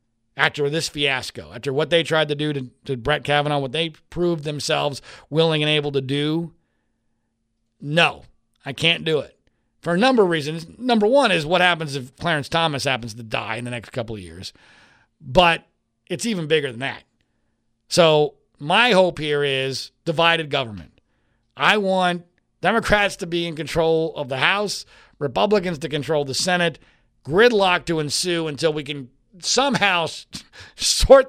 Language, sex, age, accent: English, male, 50-69, American